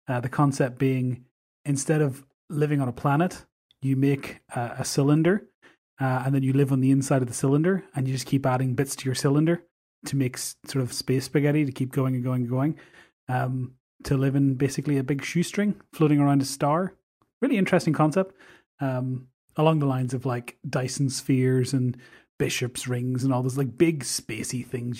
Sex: male